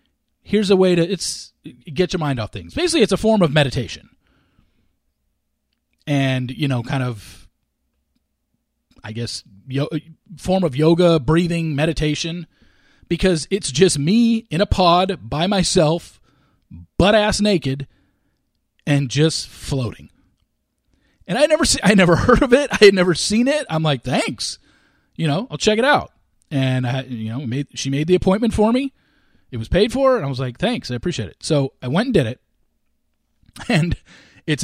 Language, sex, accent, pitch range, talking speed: English, male, American, 135-210 Hz, 165 wpm